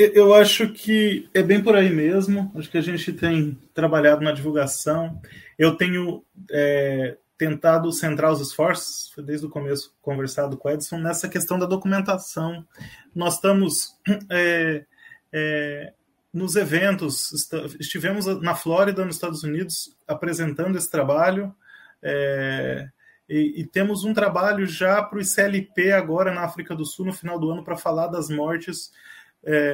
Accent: Brazilian